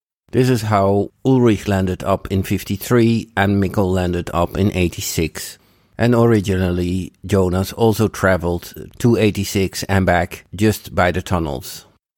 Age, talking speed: 50-69, 135 wpm